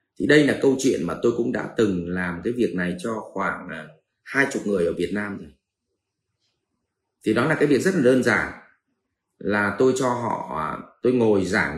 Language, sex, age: Vietnamese, male, 30-49